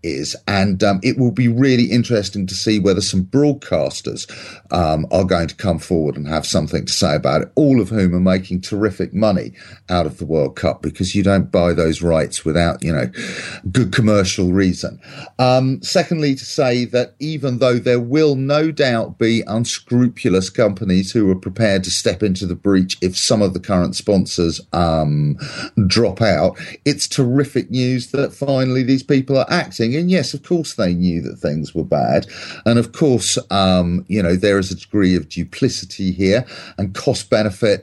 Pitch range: 95-125 Hz